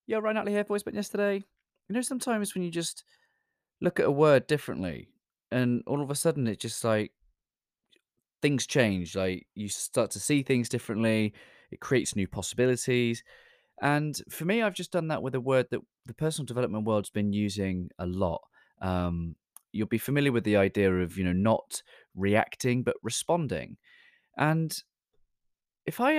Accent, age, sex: British, 20-39, male